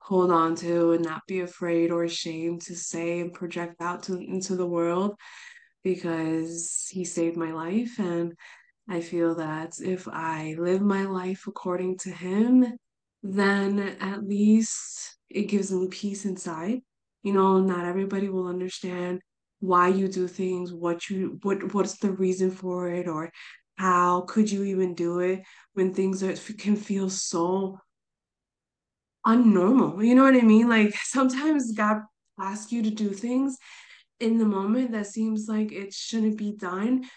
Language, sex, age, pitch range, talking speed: English, female, 20-39, 170-210 Hz, 160 wpm